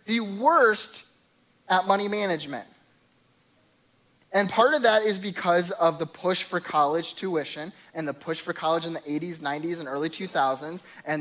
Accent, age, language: American, 20-39, English